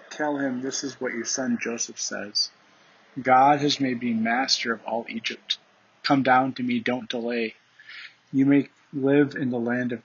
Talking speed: 180 wpm